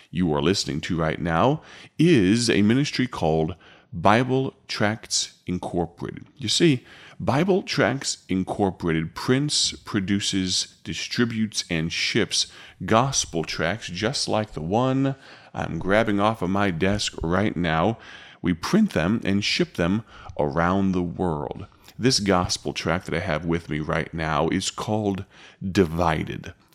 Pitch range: 85-105 Hz